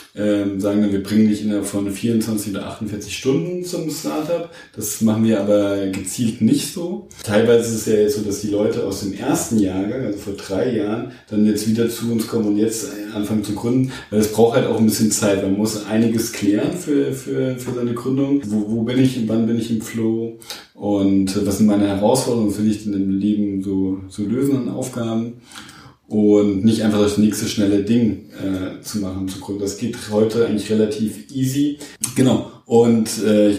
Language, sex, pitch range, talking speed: English, male, 105-120 Hz, 200 wpm